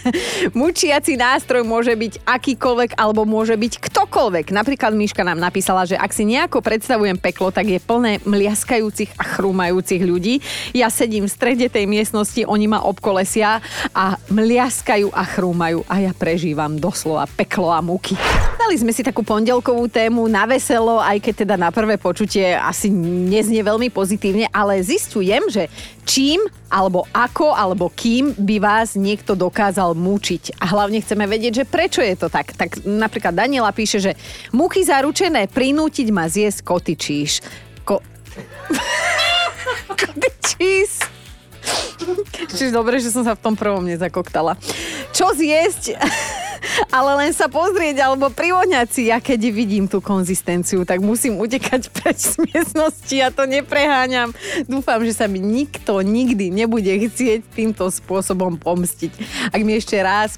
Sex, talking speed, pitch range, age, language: female, 145 wpm, 190-255 Hz, 30-49, Slovak